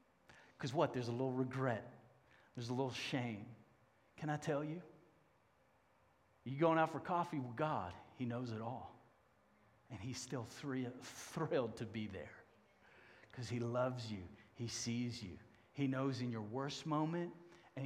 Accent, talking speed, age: American, 160 wpm, 40-59